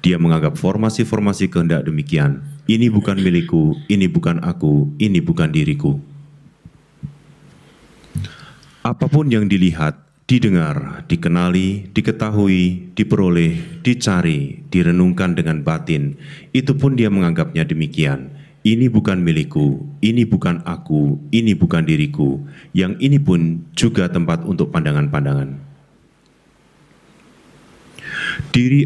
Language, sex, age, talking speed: Indonesian, male, 30-49, 100 wpm